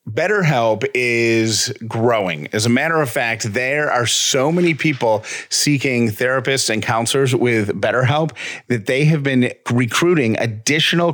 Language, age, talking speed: English, 40-59, 135 wpm